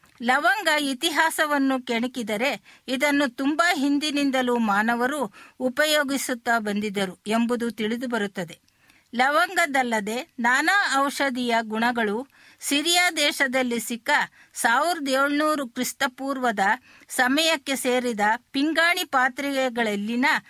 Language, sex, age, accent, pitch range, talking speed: Kannada, female, 50-69, native, 235-290 Hz, 70 wpm